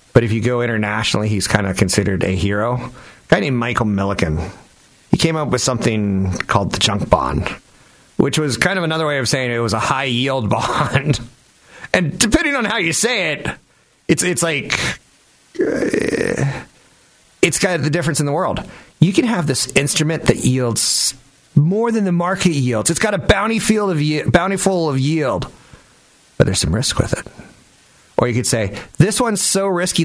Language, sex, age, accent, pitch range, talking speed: English, male, 30-49, American, 105-165 Hz, 185 wpm